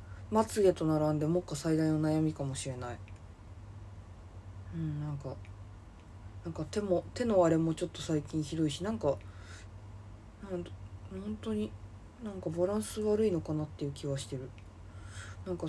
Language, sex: Japanese, female